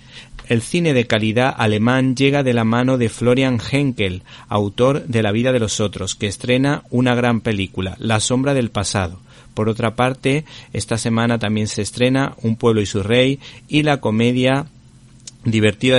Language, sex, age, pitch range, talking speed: Spanish, male, 30-49, 110-130 Hz, 170 wpm